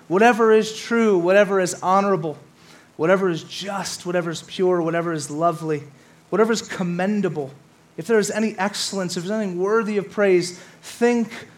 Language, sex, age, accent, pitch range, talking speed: English, male, 30-49, American, 180-230 Hz, 160 wpm